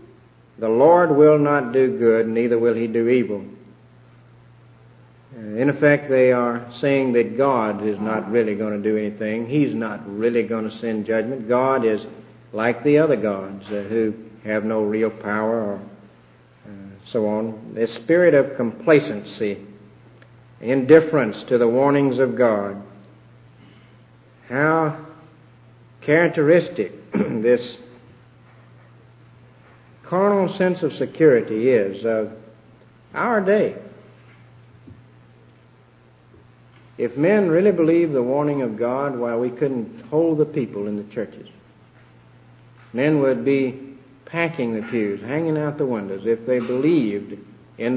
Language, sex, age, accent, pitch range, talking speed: English, male, 50-69, American, 100-135 Hz, 120 wpm